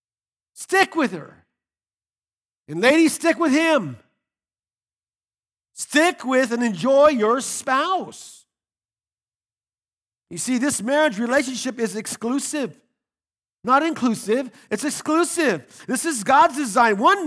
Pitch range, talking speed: 175-260 Hz, 105 wpm